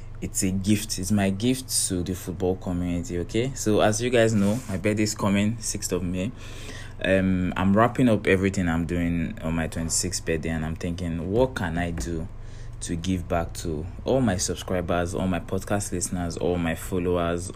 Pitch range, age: 85-105 Hz, 20-39